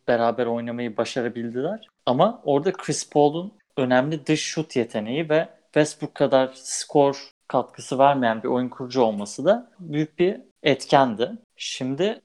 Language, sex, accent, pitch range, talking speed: Turkish, male, native, 120-175 Hz, 125 wpm